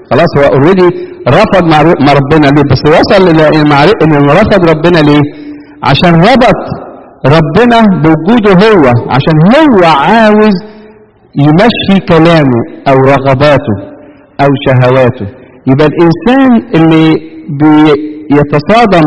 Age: 50-69